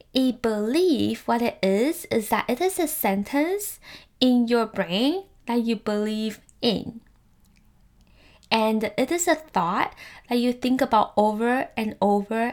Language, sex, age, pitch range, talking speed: English, female, 10-29, 195-245 Hz, 145 wpm